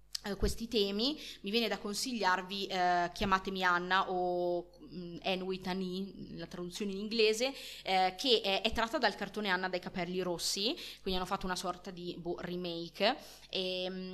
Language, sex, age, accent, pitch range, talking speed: Italian, female, 20-39, native, 180-210 Hz, 165 wpm